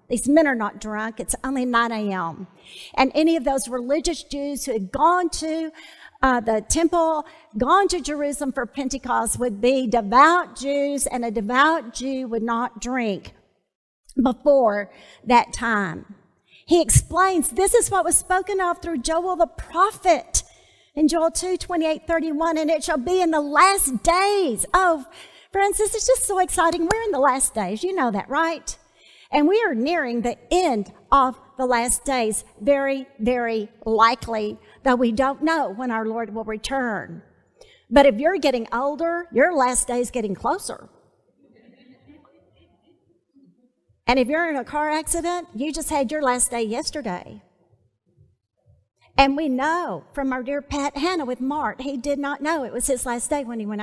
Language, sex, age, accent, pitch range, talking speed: English, female, 50-69, American, 235-325 Hz, 170 wpm